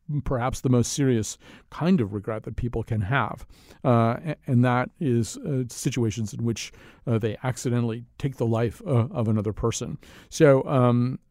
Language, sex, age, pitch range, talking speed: English, male, 50-69, 105-125 Hz, 165 wpm